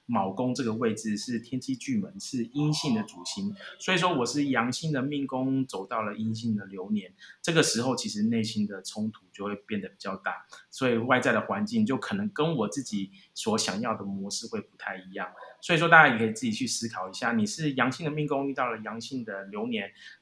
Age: 20-39